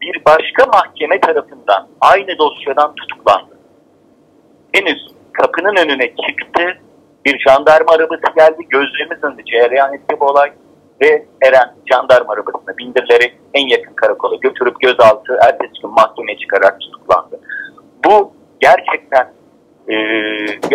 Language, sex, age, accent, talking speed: Turkish, male, 50-69, native, 115 wpm